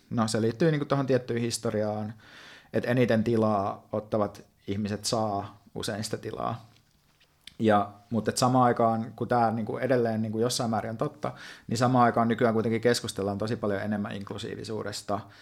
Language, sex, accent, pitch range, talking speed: Finnish, male, native, 105-125 Hz, 165 wpm